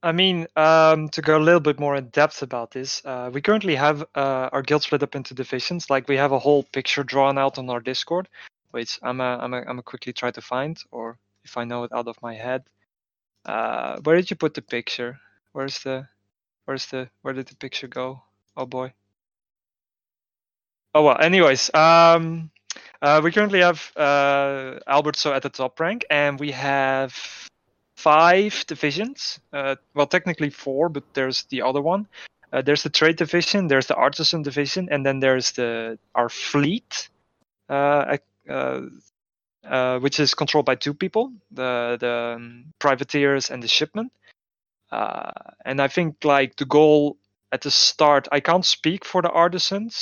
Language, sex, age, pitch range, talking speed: English, male, 20-39, 130-155 Hz, 180 wpm